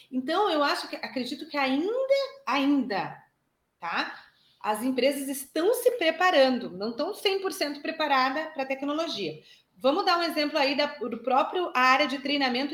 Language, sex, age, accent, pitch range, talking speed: Portuguese, female, 30-49, Brazilian, 230-315 Hz, 150 wpm